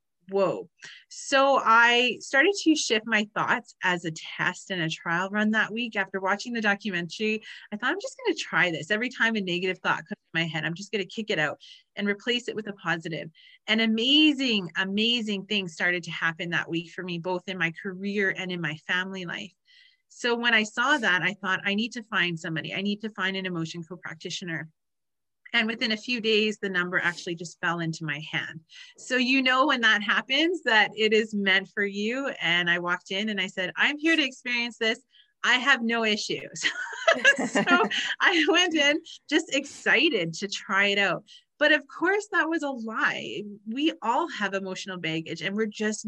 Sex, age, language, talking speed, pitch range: female, 30-49, English, 205 wpm, 180-245 Hz